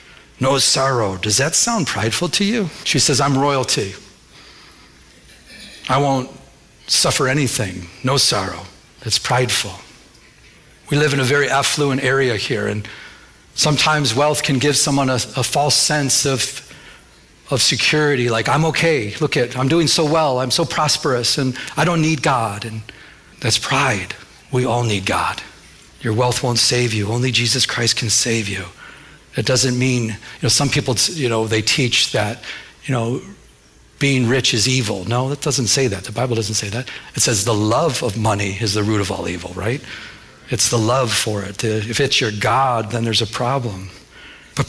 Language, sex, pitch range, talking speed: English, male, 110-140 Hz, 175 wpm